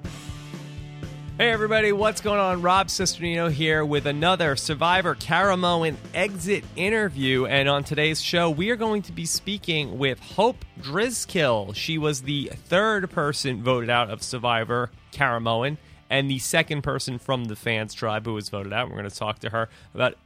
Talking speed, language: 165 wpm, English